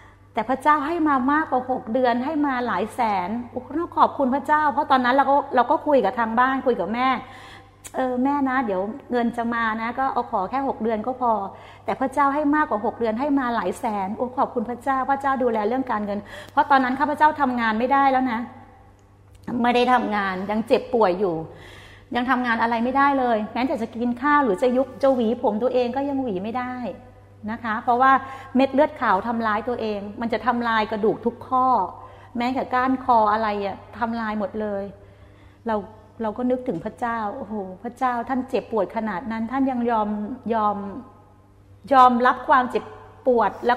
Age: 30-49